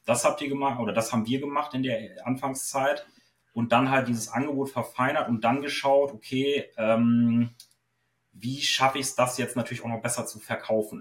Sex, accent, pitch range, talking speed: male, German, 115-135 Hz, 190 wpm